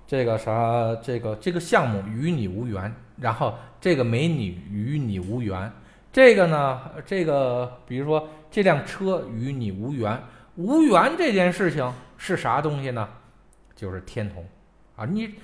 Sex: male